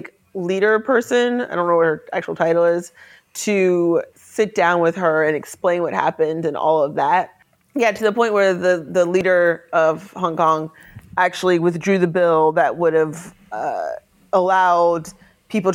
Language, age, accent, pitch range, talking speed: English, 30-49, American, 165-200 Hz, 170 wpm